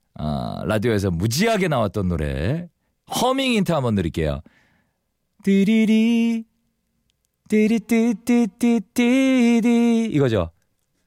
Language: Korean